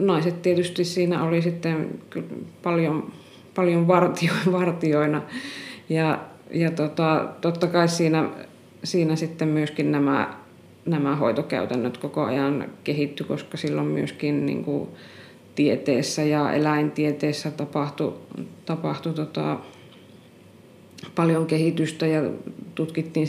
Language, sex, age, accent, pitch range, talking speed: Finnish, female, 20-39, native, 150-175 Hz, 100 wpm